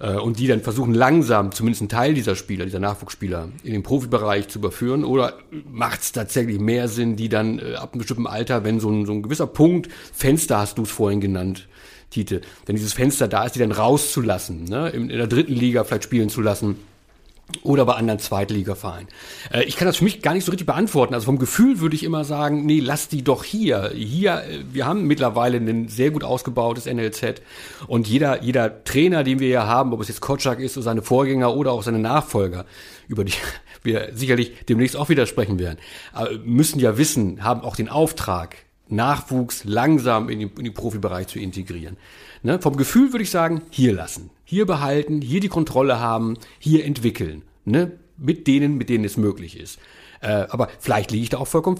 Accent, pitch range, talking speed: German, 105-140 Hz, 195 wpm